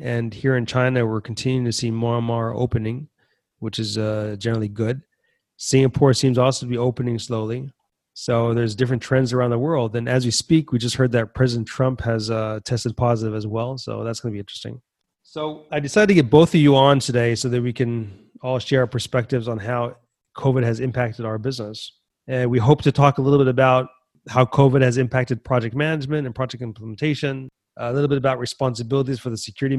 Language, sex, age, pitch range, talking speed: English, male, 30-49, 120-140 Hz, 210 wpm